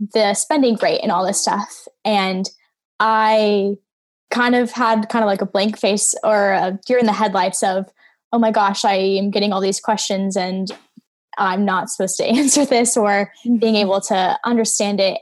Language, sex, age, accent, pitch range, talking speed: English, female, 10-29, American, 195-230 Hz, 185 wpm